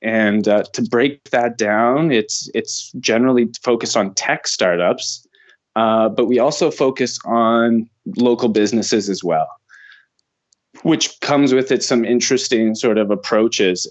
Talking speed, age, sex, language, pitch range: 140 wpm, 20-39, male, English, 110-135 Hz